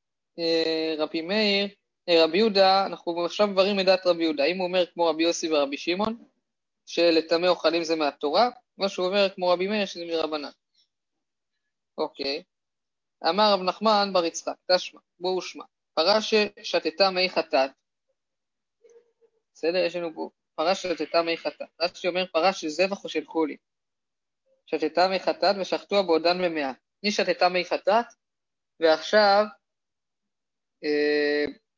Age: 20-39